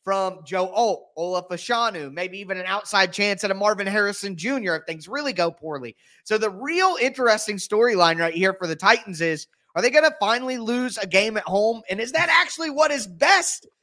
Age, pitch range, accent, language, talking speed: 20-39, 180-220 Hz, American, English, 210 wpm